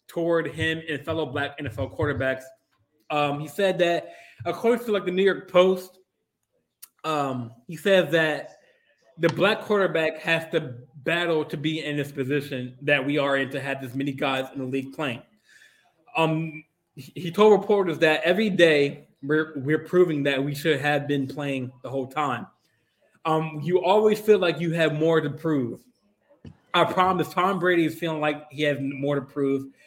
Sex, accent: male, American